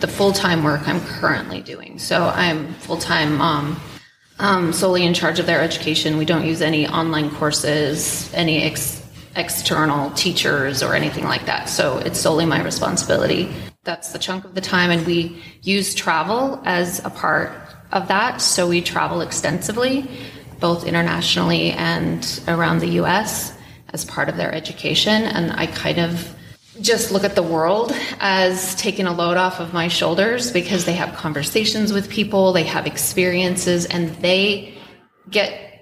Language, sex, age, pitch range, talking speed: English, female, 30-49, 160-195 Hz, 160 wpm